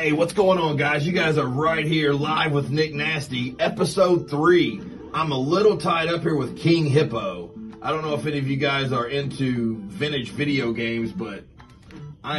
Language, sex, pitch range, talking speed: English, male, 125-160 Hz, 195 wpm